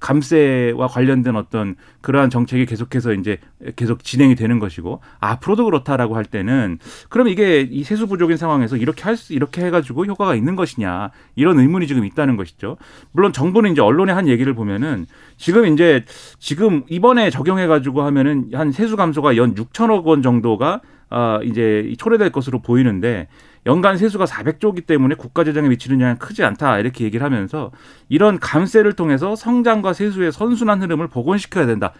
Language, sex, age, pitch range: Korean, male, 30-49, 115-165 Hz